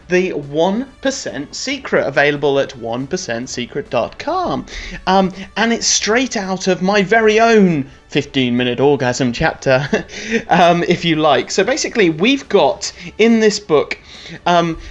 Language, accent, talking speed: English, British, 120 wpm